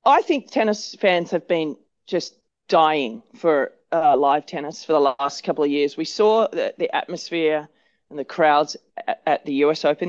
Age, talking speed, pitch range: 30-49, 185 wpm, 150-195 Hz